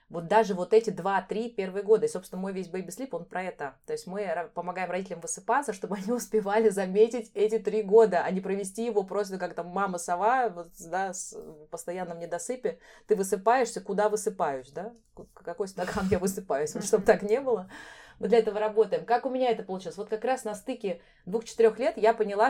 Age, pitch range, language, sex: 20-39, 185-225 Hz, Russian, female